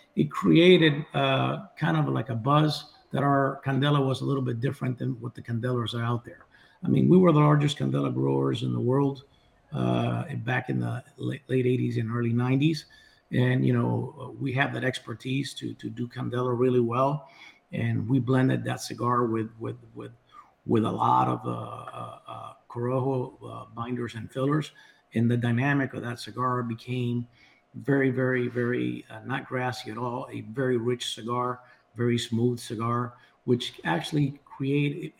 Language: English